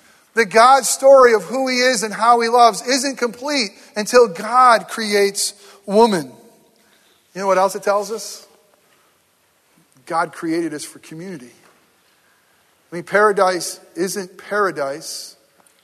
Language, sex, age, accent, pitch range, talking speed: English, male, 40-59, American, 170-240 Hz, 130 wpm